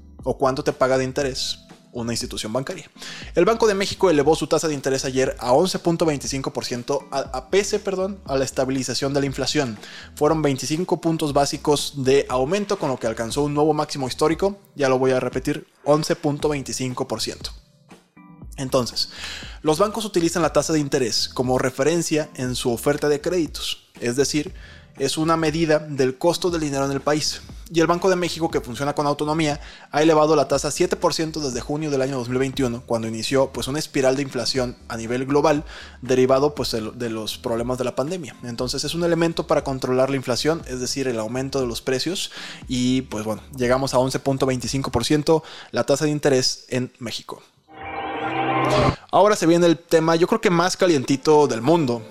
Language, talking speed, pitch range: Spanish, 175 wpm, 130-155 Hz